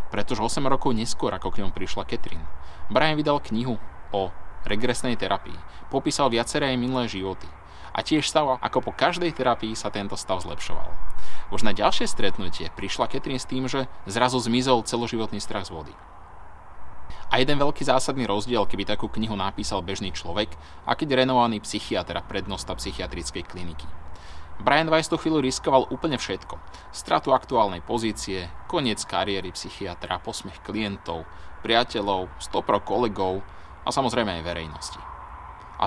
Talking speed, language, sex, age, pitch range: 145 wpm, Slovak, male, 20-39, 95-130 Hz